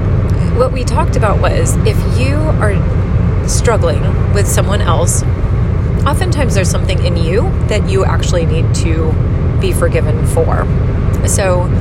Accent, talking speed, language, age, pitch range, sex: American, 130 wpm, English, 30-49, 90-105 Hz, female